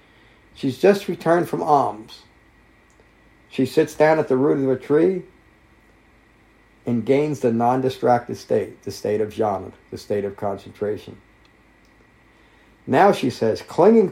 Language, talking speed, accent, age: English, 130 wpm, American, 50-69